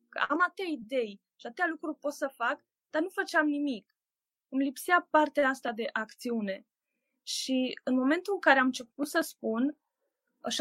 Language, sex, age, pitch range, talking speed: Romanian, female, 20-39, 235-310 Hz, 165 wpm